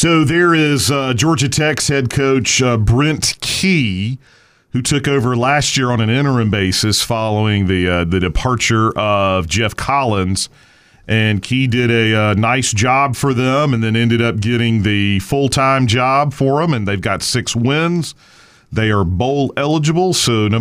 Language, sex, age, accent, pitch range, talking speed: English, male, 40-59, American, 105-135 Hz, 170 wpm